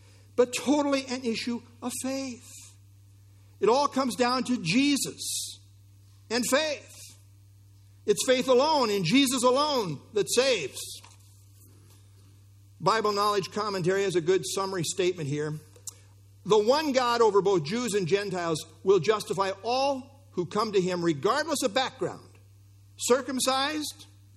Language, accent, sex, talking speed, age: English, American, male, 125 wpm, 60-79